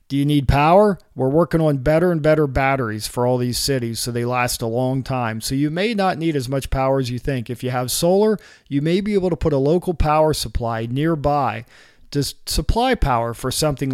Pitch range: 125-170 Hz